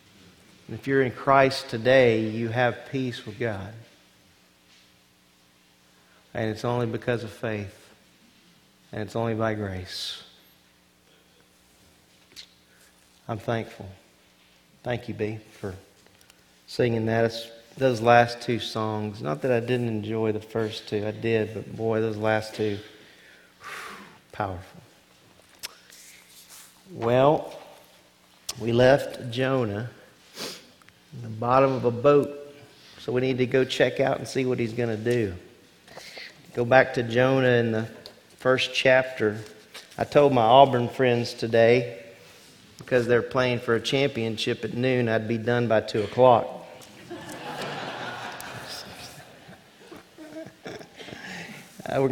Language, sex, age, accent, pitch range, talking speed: English, male, 40-59, American, 100-125 Hz, 115 wpm